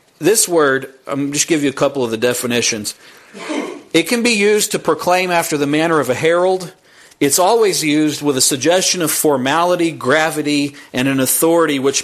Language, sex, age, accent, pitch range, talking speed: English, male, 40-59, American, 150-210 Hz, 180 wpm